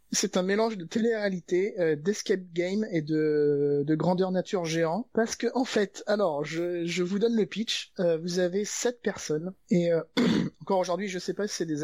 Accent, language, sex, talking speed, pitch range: French, French, male, 205 wpm, 155-195 Hz